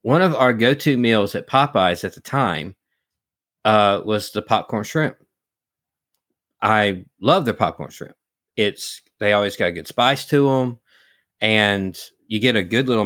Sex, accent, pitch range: male, American, 95-120 Hz